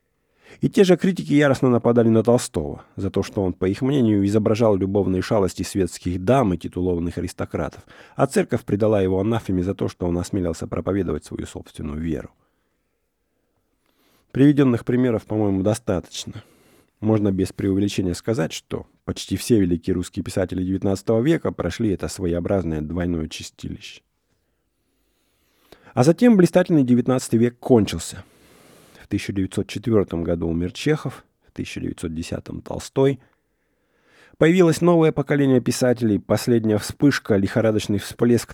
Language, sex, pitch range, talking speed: English, male, 95-120 Hz, 125 wpm